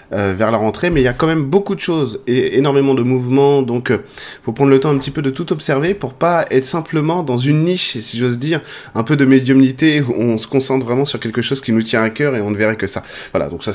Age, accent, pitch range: 20-39, French, 110-145 Hz